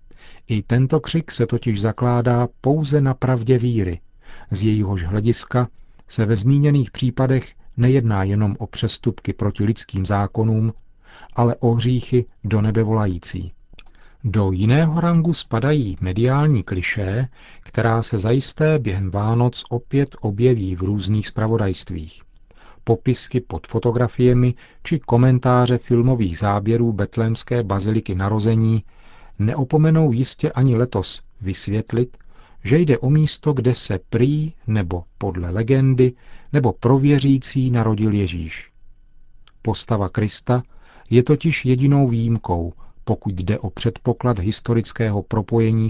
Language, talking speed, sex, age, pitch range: Czech, 115 wpm, male, 40-59, 100-125 Hz